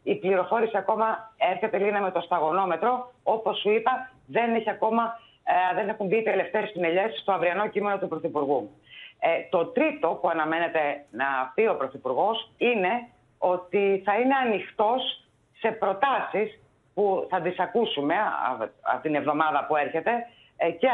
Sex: female